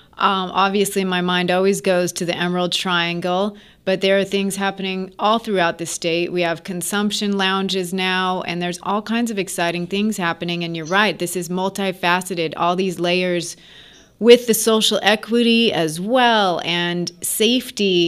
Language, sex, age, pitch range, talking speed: English, female, 30-49, 175-205 Hz, 165 wpm